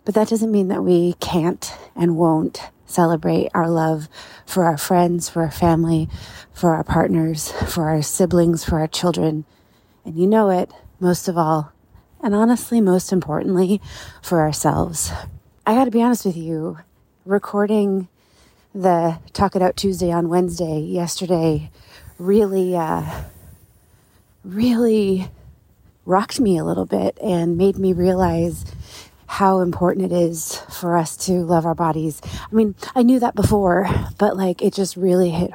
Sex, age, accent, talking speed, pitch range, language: female, 30-49, American, 150 wpm, 165-190 Hz, English